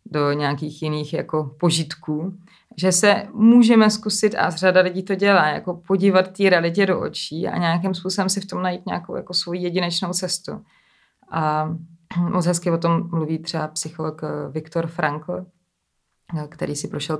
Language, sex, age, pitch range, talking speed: Czech, female, 20-39, 150-180 Hz, 155 wpm